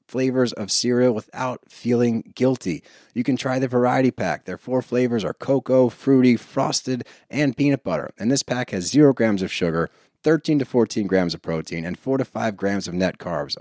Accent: American